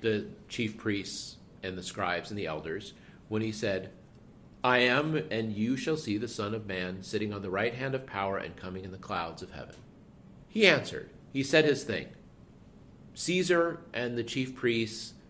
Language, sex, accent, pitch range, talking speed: English, male, American, 110-155 Hz, 185 wpm